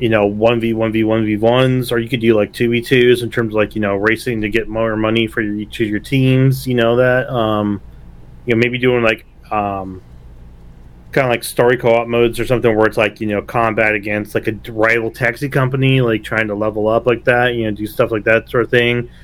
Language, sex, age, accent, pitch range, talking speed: English, male, 30-49, American, 105-120 Hz, 220 wpm